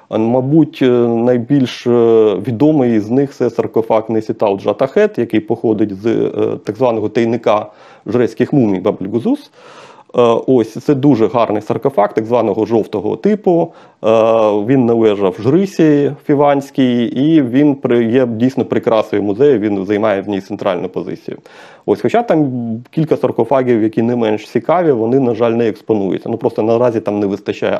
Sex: male